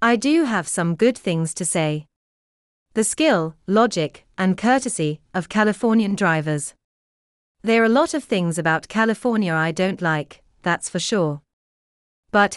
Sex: female